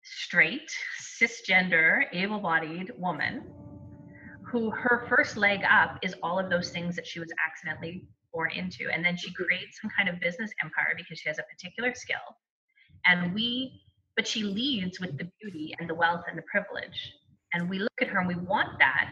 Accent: American